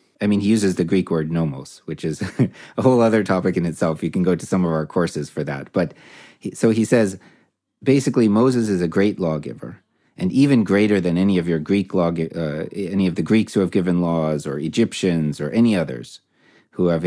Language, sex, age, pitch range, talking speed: English, male, 30-49, 80-95 Hz, 220 wpm